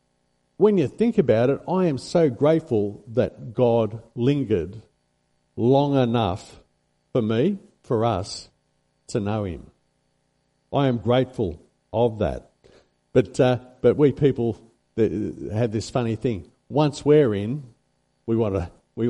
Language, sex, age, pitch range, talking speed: English, male, 50-69, 100-130 Hz, 130 wpm